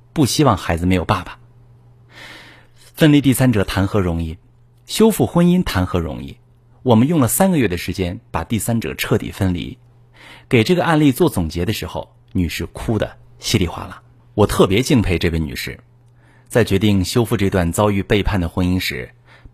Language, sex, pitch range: Chinese, male, 100-130 Hz